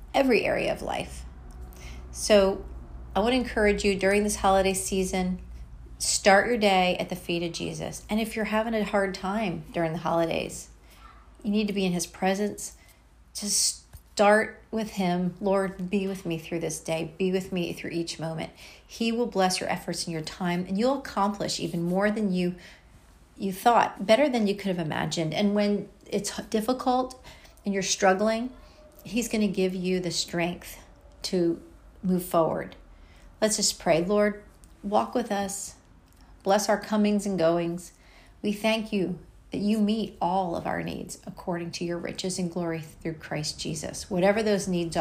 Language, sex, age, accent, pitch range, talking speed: English, female, 40-59, American, 165-205 Hz, 170 wpm